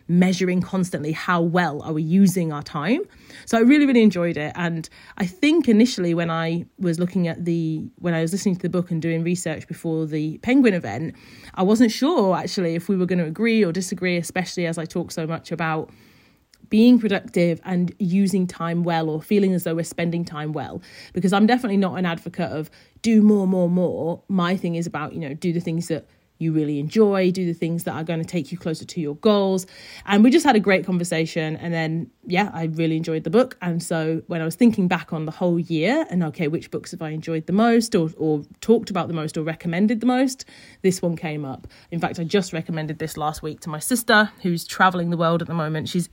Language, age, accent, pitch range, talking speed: English, 30-49, British, 160-195 Hz, 230 wpm